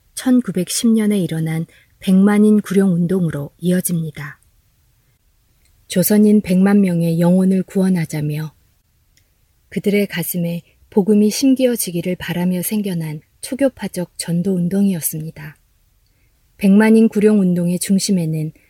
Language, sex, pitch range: Korean, female, 155-205 Hz